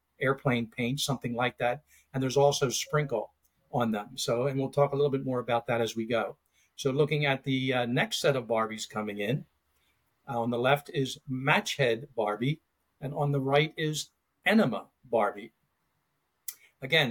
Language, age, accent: English, 50-69, American